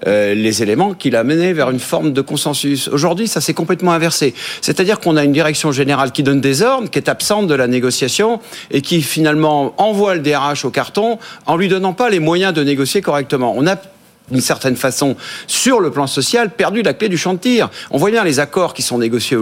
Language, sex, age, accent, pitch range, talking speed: French, male, 50-69, French, 140-195 Hz, 220 wpm